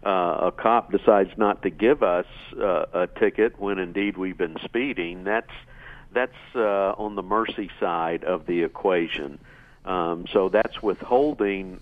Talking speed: 150 wpm